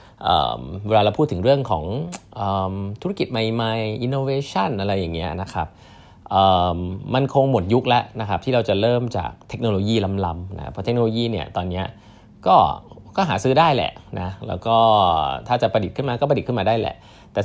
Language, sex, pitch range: Thai, male, 95-120 Hz